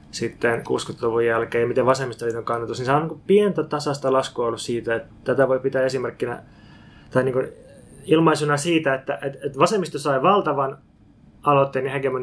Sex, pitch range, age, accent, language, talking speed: male, 120-145 Hz, 20-39, native, Finnish, 155 wpm